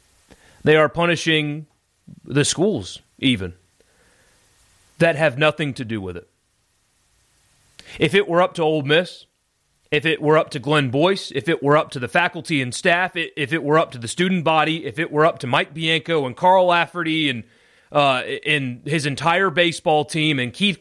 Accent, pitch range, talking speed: American, 140-185 Hz, 180 wpm